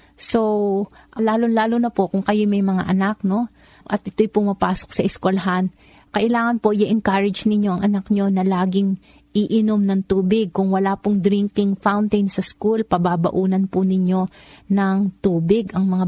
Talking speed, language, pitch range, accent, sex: 155 wpm, Filipino, 185-205 Hz, native, female